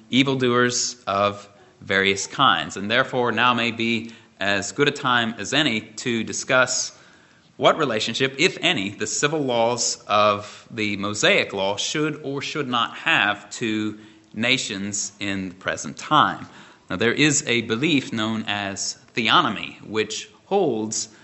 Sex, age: male, 30-49